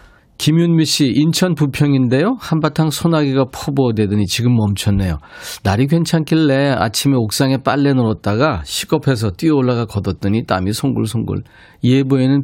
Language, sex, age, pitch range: Korean, male, 40-59, 95-140 Hz